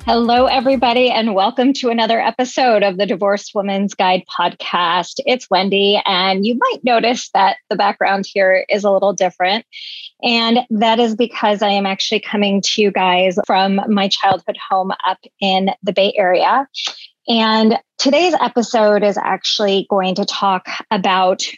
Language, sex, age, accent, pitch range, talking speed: English, female, 20-39, American, 195-235 Hz, 155 wpm